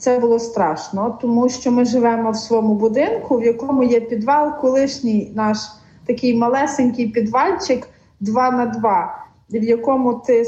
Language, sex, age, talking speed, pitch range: Ukrainian, female, 40-59, 145 wpm, 215-260 Hz